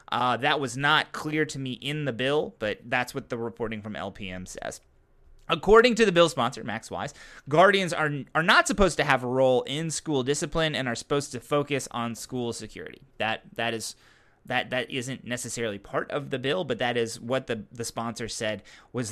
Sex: male